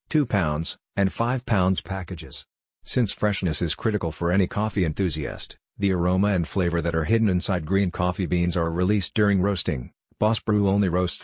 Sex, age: male, 50-69